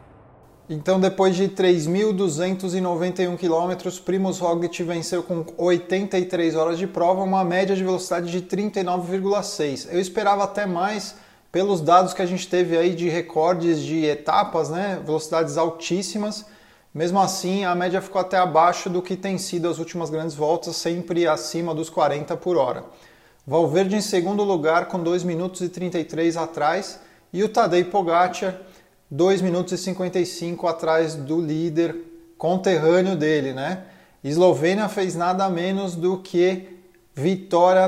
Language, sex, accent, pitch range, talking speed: Portuguese, male, Brazilian, 170-190 Hz, 140 wpm